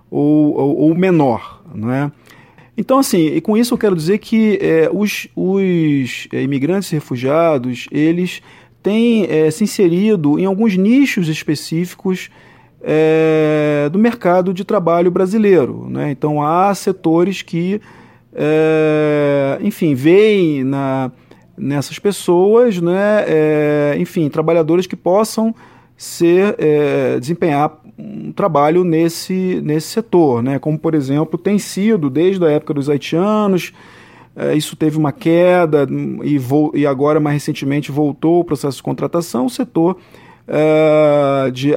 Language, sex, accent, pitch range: English, male, Brazilian, 145-180 Hz